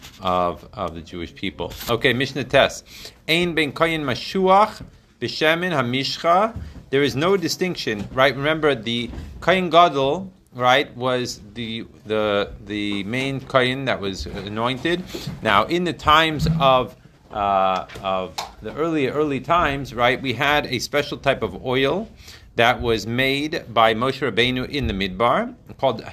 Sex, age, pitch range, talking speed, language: male, 40-59, 115-150 Hz, 140 wpm, Hebrew